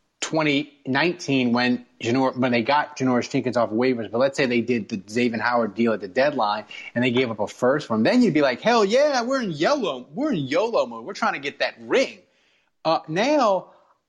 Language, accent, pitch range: English, American, 125-185 Hz